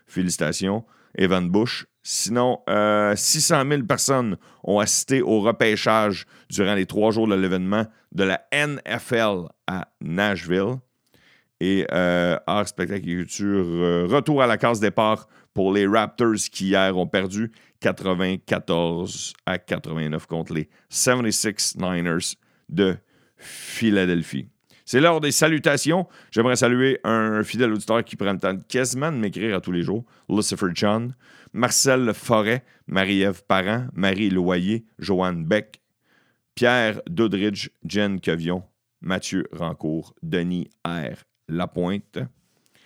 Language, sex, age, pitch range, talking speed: French, male, 50-69, 95-115 Hz, 125 wpm